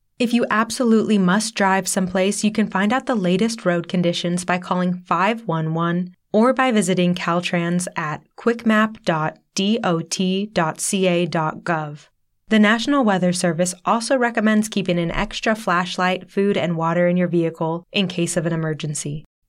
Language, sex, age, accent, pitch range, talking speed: English, female, 20-39, American, 170-210 Hz, 135 wpm